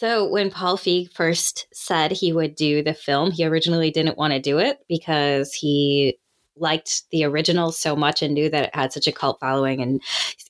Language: English